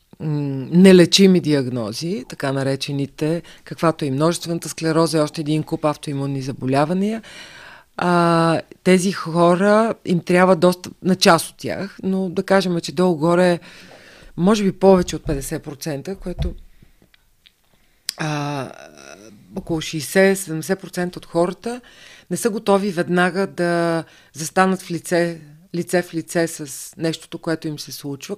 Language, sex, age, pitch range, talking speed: Bulgarian, female, 40-59, 155-190 Hz, 120 wpm